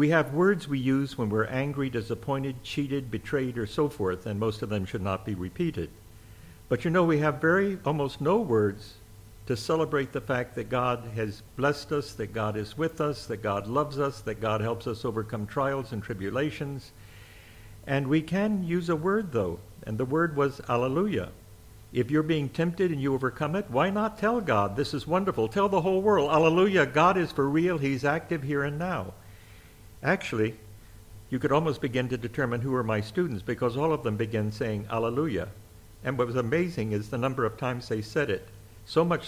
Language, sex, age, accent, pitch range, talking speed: English, male, 50-69, American, 110-150 Hz, 200 wpm